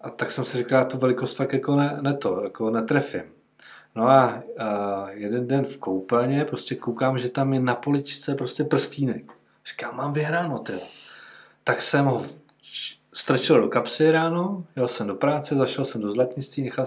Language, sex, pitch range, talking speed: Czech, male, 115-140 Hz, 175 wpm